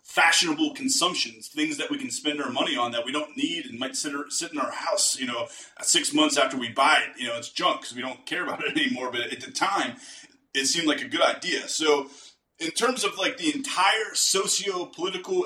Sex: male